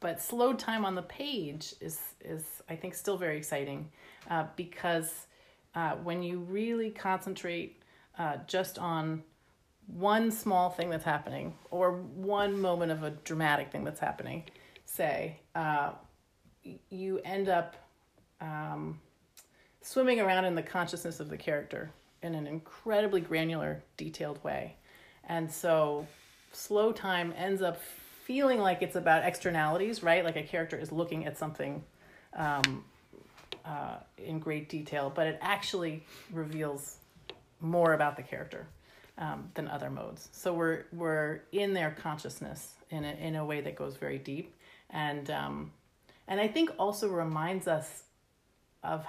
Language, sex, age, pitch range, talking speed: English, female, 30-49, 155-190 Hz, 145 wpm